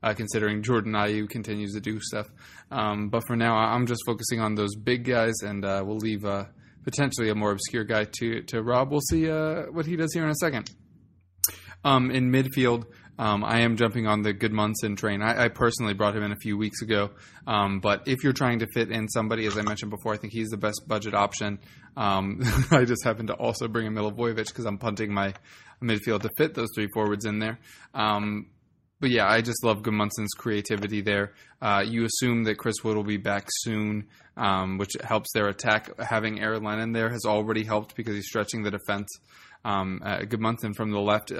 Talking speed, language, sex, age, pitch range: 215 wpm, English, male, 20-39, 105-115 Hz